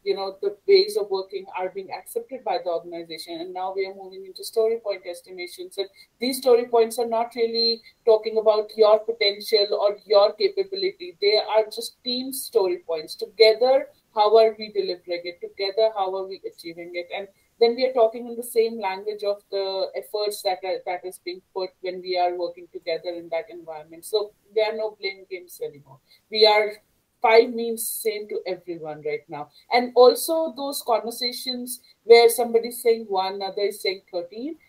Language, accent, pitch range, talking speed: English, Indian, 195-245 Hz, 185 wpm